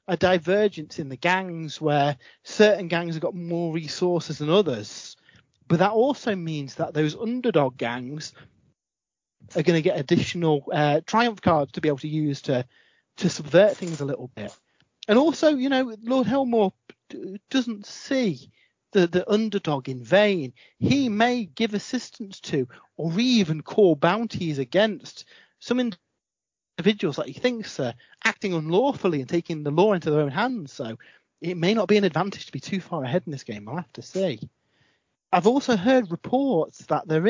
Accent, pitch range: British, 150-215 Hz